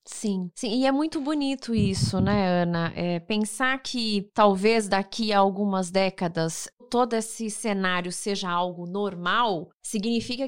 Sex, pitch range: female, 190-245 Hz